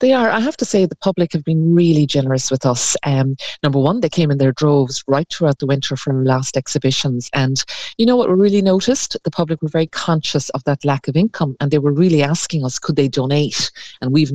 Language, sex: English, female